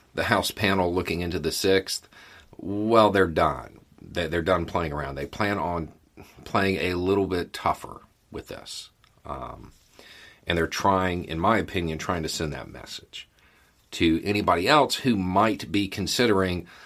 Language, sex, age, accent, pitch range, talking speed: English, male, 40-59, American, 80-100 Hz, 155 wpm